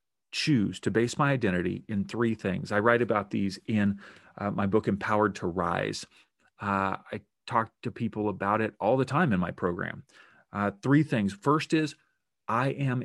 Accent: American